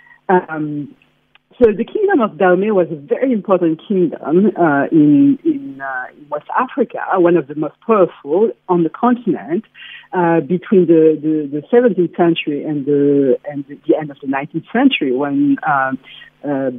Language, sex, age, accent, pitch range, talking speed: English, female, 50-69, French, 160-235 Hz, 160 wpm